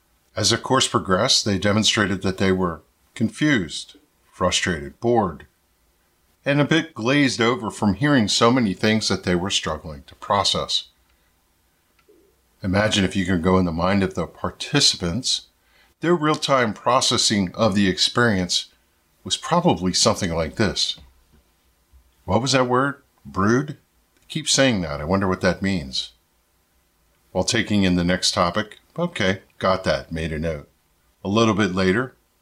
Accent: American